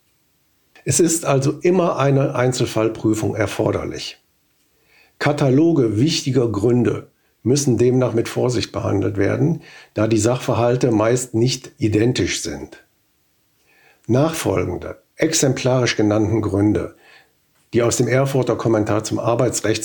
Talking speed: 105 wpm